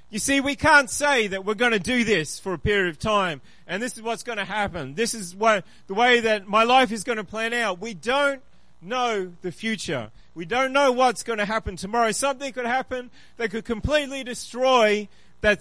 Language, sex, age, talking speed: English, male, 30-49, 220 wpm